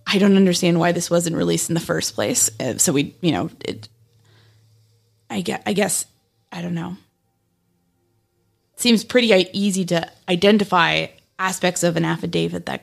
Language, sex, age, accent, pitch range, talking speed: English, female, 20-39, American, 125-195 Hz, 160 wpm